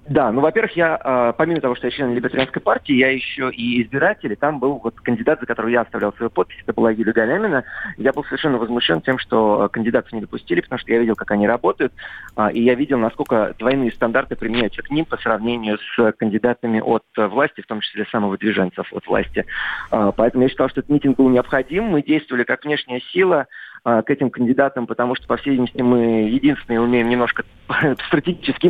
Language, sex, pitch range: Russian, male, 115-135 Hz